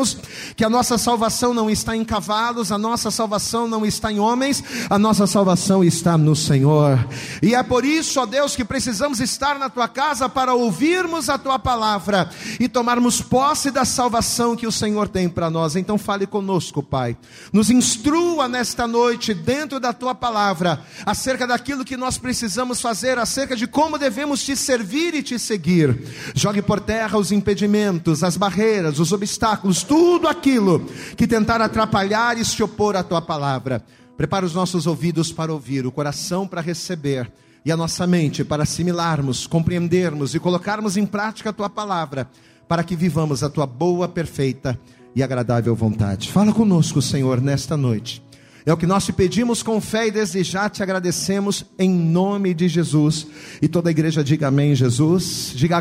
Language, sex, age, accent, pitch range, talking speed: Portuguese, male, 40-59, Brazilian, 165-235 Hz, 170 wpm